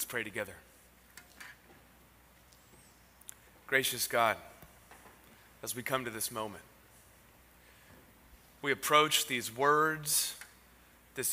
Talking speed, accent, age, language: 85 wpm, American, 30-49, English